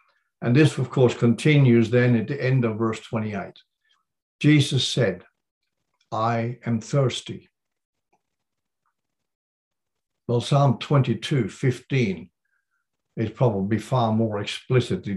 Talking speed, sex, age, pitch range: 105 wpm, male, 60-79, 110-130 Hz